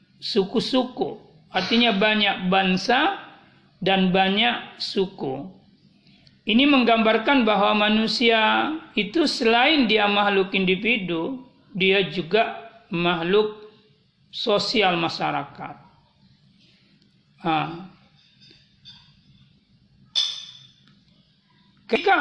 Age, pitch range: 40-59, 190-235 Hz